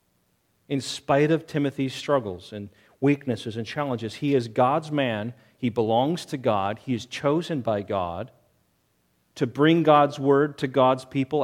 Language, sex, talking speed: English, male, 150 wpm